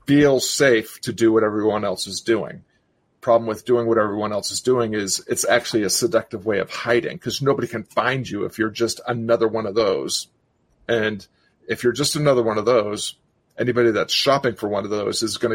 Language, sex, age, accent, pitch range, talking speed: English, male, 40-59, American, 110-125 Hz, 210 wpm